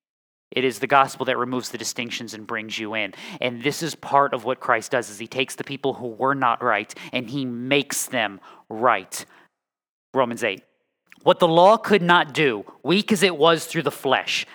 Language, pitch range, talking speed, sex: English, 135-205 Hz, 200 wpm, male